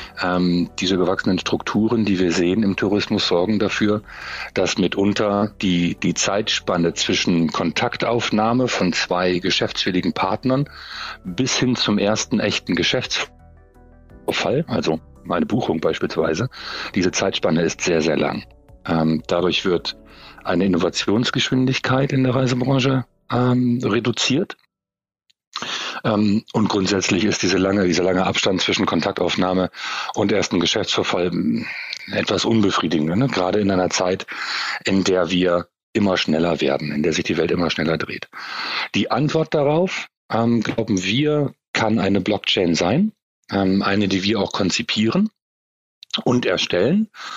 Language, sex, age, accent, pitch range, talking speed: German, male, 40-59, German, 90-120 Hz, 125 wpm